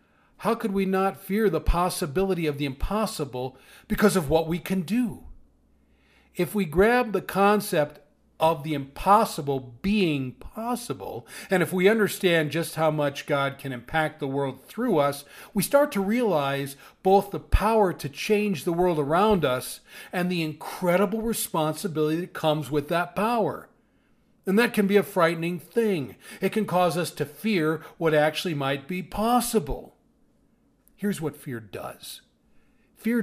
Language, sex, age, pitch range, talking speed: English, male, 40-59, 140-195 Hz, 155 wpm